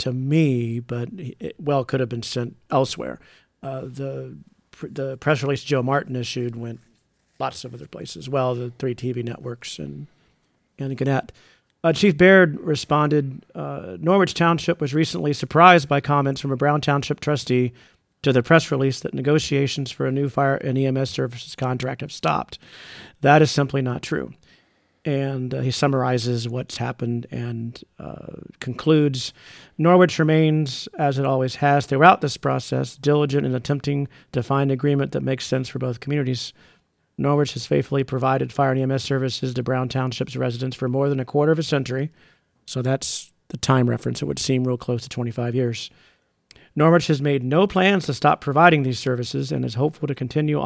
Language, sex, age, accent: English, male, 40-59, American